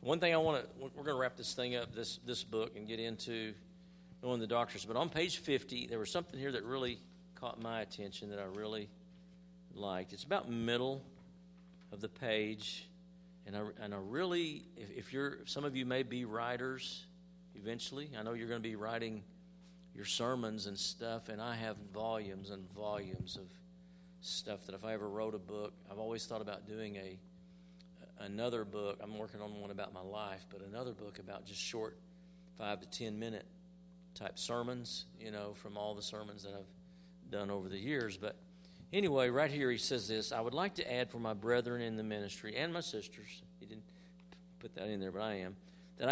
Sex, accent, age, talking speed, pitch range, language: male, American, 50-69, 200 wpm, 105-175 Hz, English